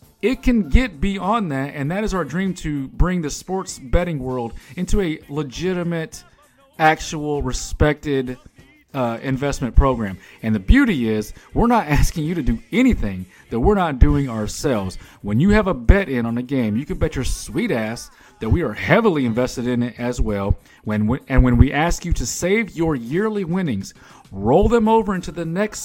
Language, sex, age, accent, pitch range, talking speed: English, male, 40-59, American, 120-175 Hz, 190 wpm